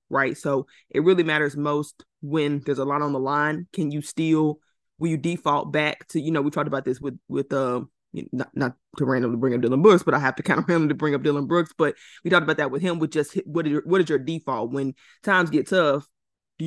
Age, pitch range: 20-39, 145-175 Hz